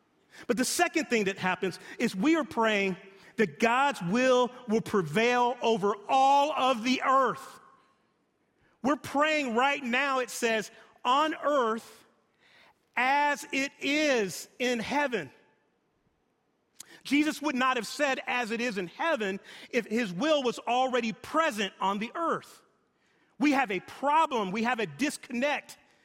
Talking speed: 140 wpm